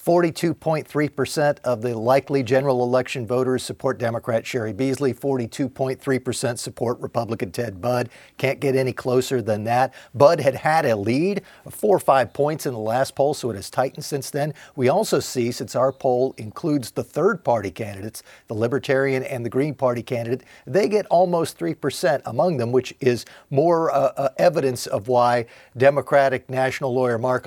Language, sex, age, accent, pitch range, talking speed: English, male, 50-69, American, 120-140 Hz, 170 wpm